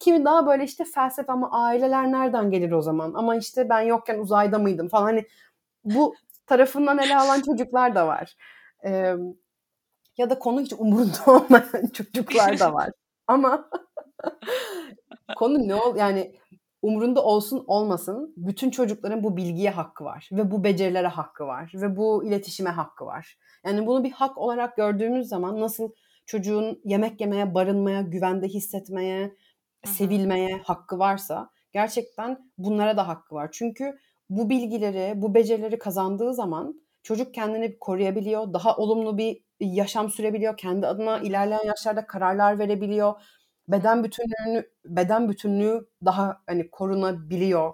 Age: 30-49